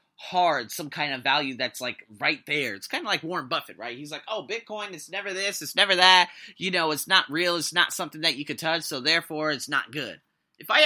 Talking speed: 250 wpm